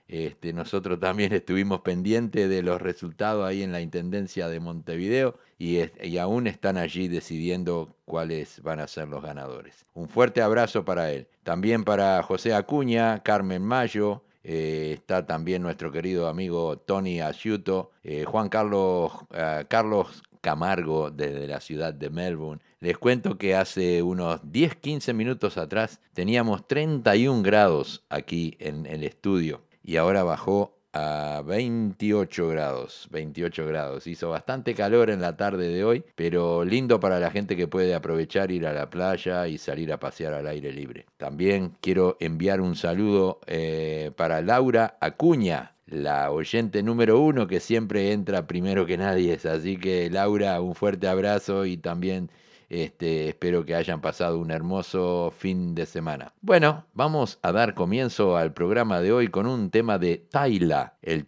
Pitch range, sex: 85-105 Hz, male